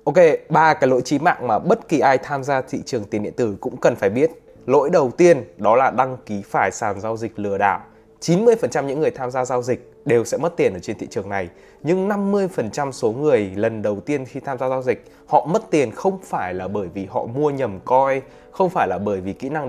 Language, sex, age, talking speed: Vietnamese, male, 20-39, 245 wpm